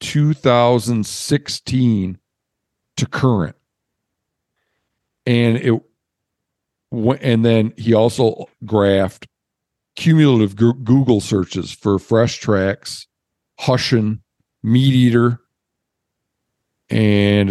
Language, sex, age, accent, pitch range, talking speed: English, male, 50-69, American, 100-130 Hz, 70 wpm